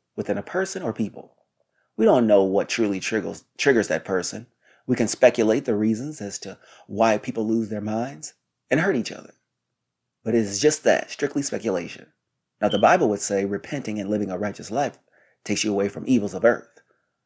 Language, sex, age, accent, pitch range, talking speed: English, male, 30-49, American, 100-120 Hz, 190 wpm